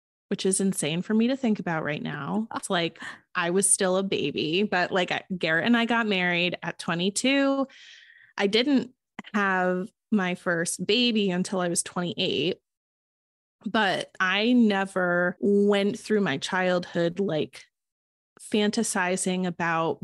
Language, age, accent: English, 20-39, American